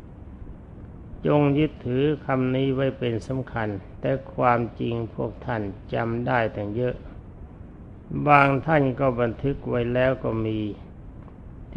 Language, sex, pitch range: Thai, male, 105-130 Hz